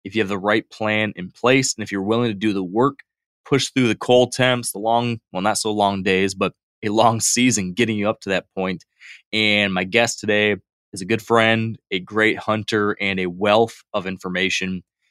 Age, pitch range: 20-39, 95-115 Hz